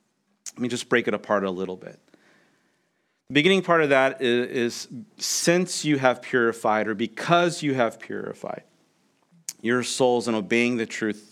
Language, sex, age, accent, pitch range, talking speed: English, male, 40-59, American, 120-155 Hz, 165 wpm